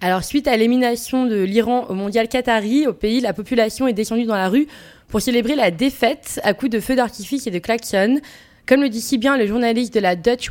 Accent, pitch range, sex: French, 210-245 Hz, female